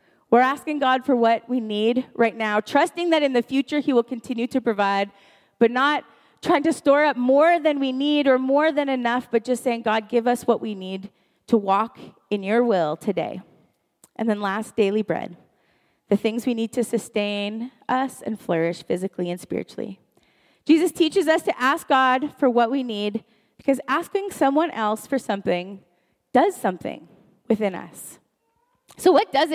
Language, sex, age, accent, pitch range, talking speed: English, female, 30-49, American, 215-275 Hz, 180 wpm